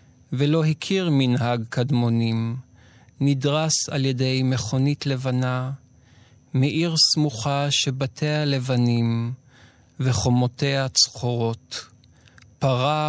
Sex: male